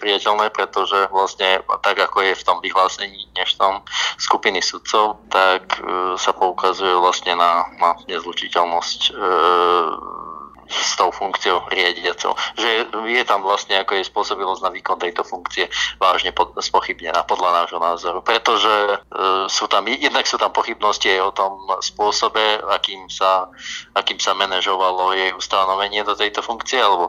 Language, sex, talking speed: Slovak, male, 140 wpm